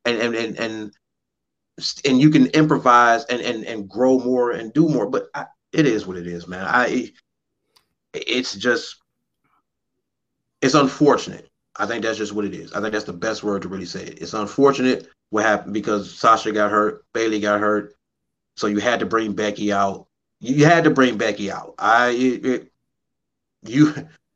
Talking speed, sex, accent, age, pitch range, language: 180 wpm, male, American, 30-49, 105-140 Hz, English